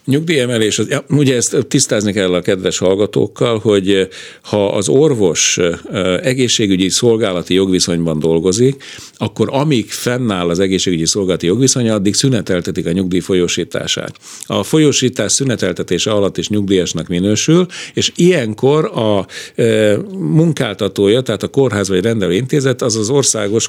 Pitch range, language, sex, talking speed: 95-130 Hz, Hungarian, male, 125 wpm